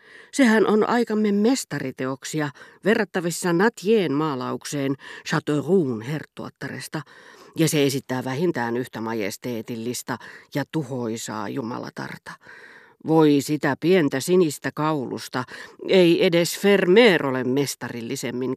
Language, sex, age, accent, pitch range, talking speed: Finnish, female, 40-59, native, 125-165 Hz, 90 wpm